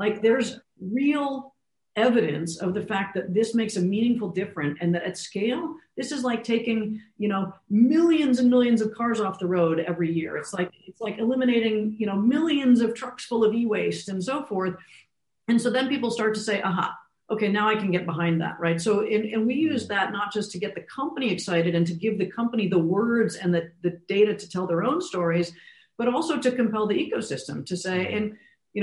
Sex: female